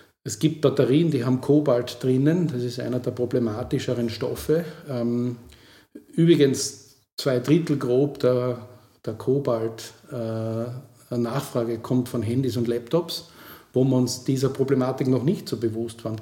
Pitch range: 125-150 Hz